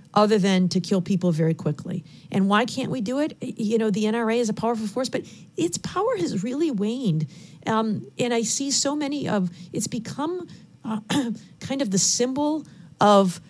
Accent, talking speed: American, 185 wpm